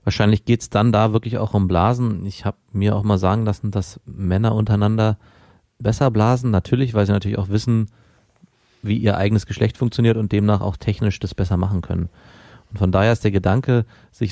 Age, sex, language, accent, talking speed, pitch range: 30-49, male, German, German, 195 wpm, 100-120 Hz